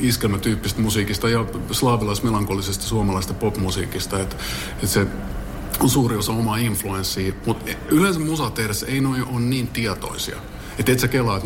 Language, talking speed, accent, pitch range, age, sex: Finnish, 140 wpm, native, 100-120 Hz, 50-69, male